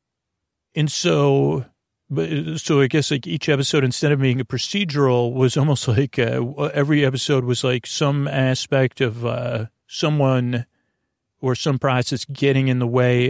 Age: 40-59